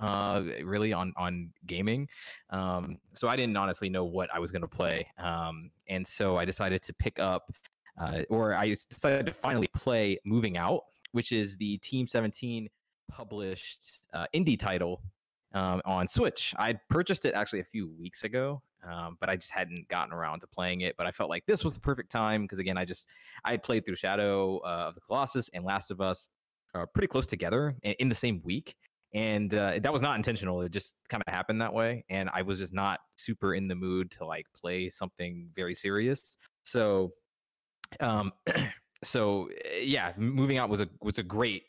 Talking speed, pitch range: 195 wpm, 90-110 Hz